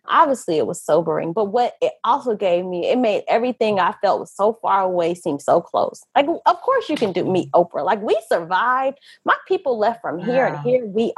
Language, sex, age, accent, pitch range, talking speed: English, female, 20-39, American, 185-255 Hz, 220 wpm